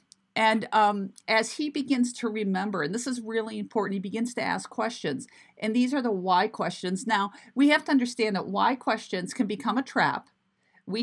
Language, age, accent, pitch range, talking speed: English, 40-59, American, 185-230 Hz, 195 wpm